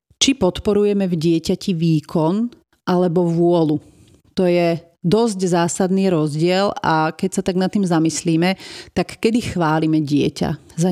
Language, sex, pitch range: Slovak, female, 165-205 Hz